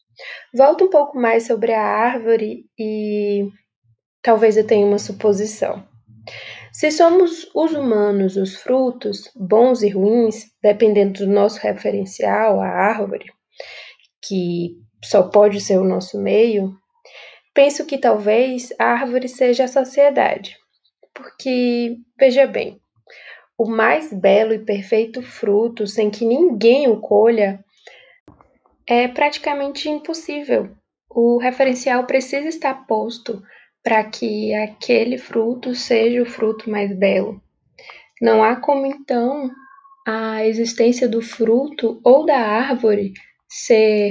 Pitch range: 205-255 Hz